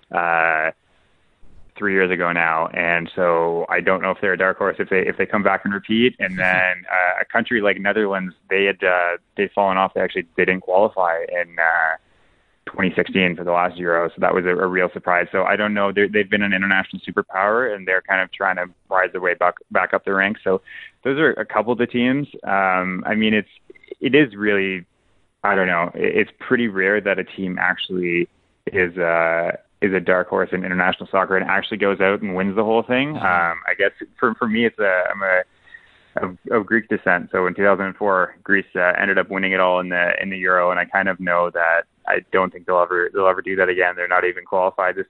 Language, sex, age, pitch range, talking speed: English, male, 20-39, 90-105 Hz, 230 wpm